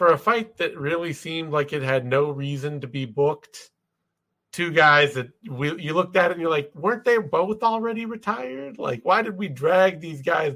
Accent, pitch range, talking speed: American, 135-190 Hz, 210 wpm